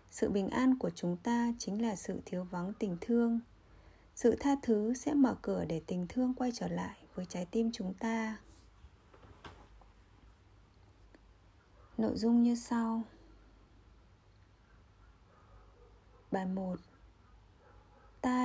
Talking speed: 120 wpm